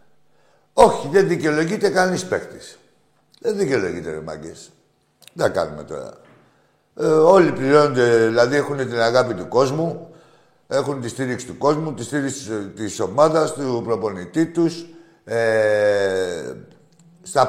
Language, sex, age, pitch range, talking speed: Greek, male, 60-79, 110-155 Hz, 120 wpm